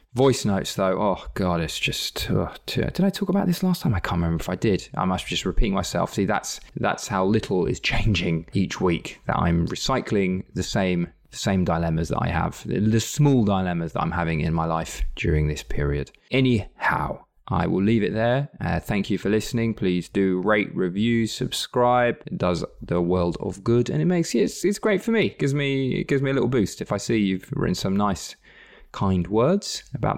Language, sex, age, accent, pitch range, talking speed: English, male, 20-39, British, 90-130 Hz, 215 wpm